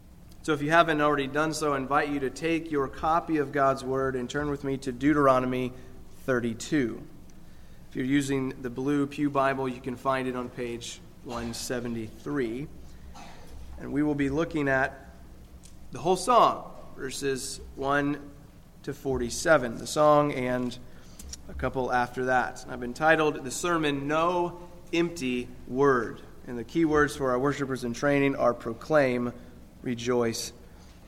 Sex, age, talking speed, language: male, 30-49, 150 wpm, English